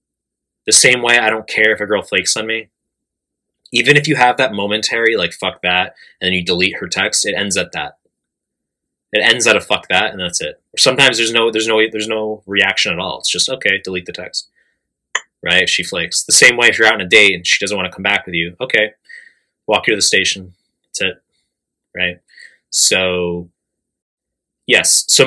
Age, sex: 20-39, male